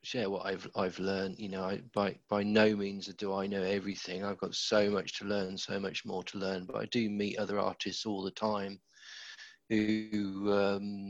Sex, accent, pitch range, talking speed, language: male, British, 100-110 Hz, 205 wpm, English